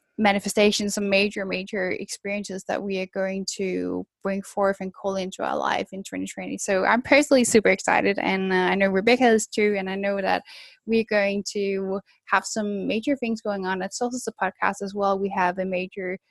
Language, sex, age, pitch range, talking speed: English, female, 10-29, 195-225 Hz, 190 wpm